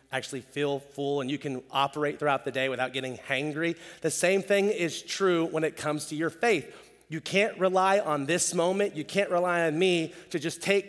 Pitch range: 140-175 Hz